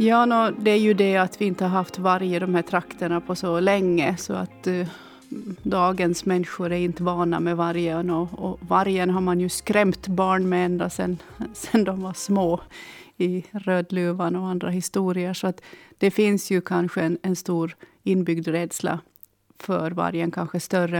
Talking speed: 185 wpm